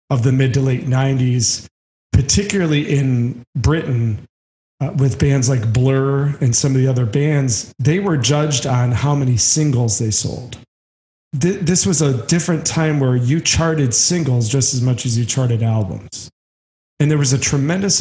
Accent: American